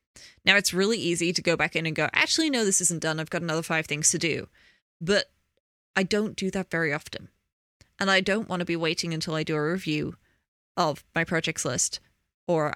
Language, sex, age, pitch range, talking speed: English, female, 20-39, 160-185 Hz, 215 wpm